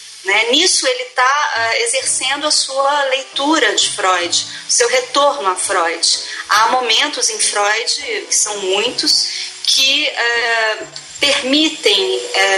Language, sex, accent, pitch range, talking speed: Portuguese, female, Brazilian, 210-320 Hz, 115 wpm